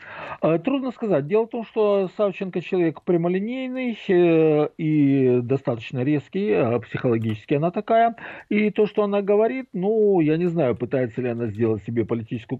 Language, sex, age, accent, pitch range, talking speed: Russian, male, 50-69, native, 110-180 Hz, 150 wpm